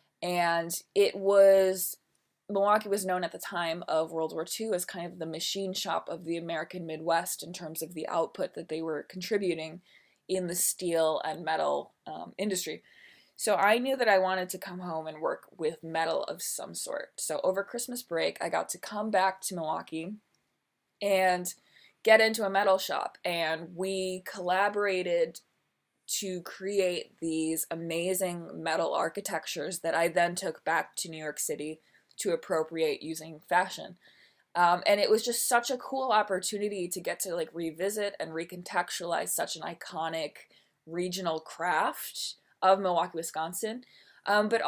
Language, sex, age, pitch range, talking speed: English, female, 20-39, 165-195 Hz, 160 wpm